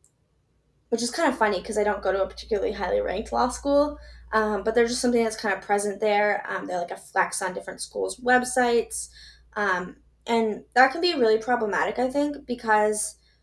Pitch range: 200-235 Hz